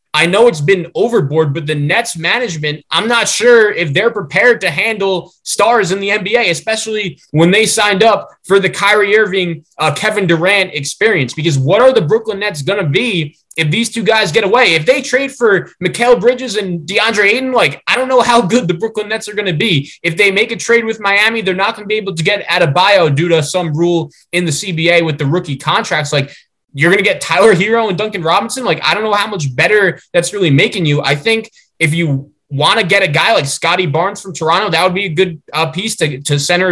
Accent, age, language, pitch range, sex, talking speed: American, 20-39, English, 150-200 Hz, male, 235 wpm